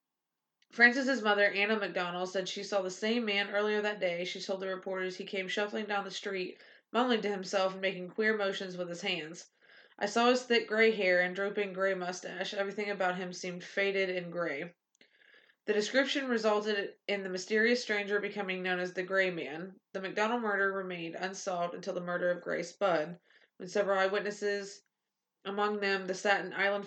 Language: English